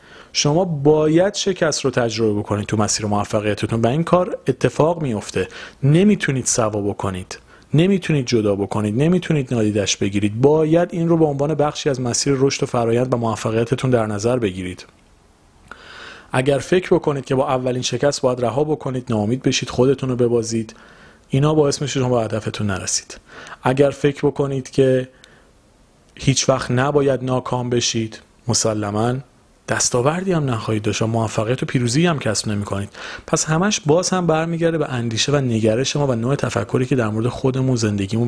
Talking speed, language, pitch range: 160 wpm, Persian, 110-145 Hz